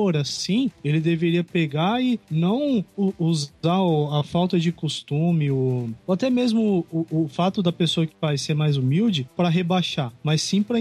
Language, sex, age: Portuguese, male, 20-39